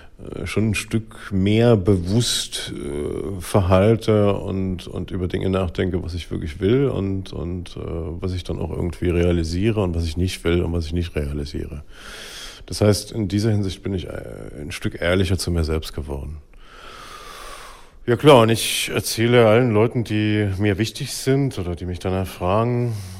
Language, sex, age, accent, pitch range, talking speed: German, male, 40-59, German, 90-110 Hz, 170 wpm